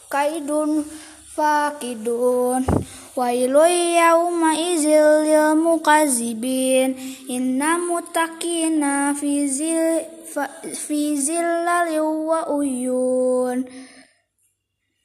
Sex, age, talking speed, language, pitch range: female, 20-39, 40 wpm, Indonesian, 265-320 Hz